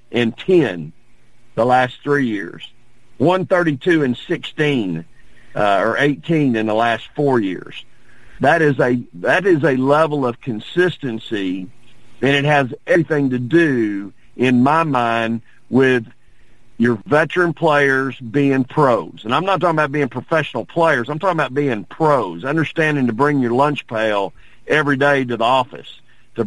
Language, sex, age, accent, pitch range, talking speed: English, male, 50-69, American, 120-150 Hz, 145 wpm